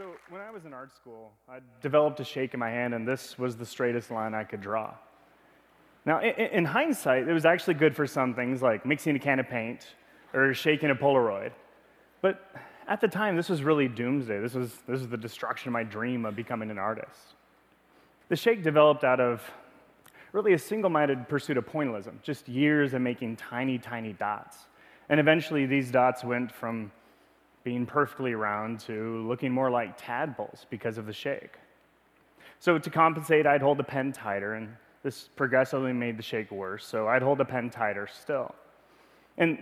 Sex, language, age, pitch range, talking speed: male, English, 30-49, 120-150 Hz, 190 wpm